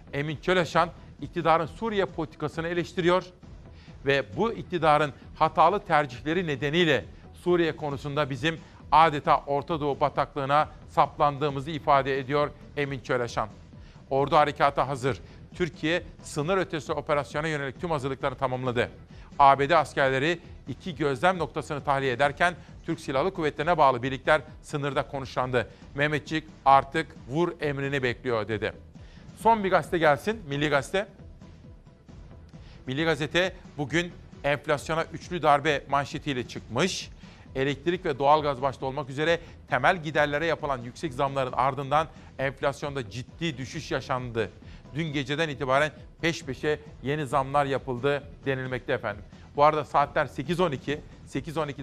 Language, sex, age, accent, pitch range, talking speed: Turkish, male, 50-69, native, 140-165 Hz, 115 wpm